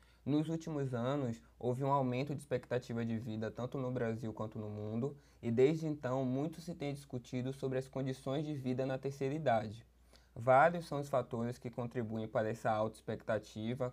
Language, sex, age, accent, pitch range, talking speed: Portuguese, male, 20-39, Brazilian, 115-130 Hz, 175 wpm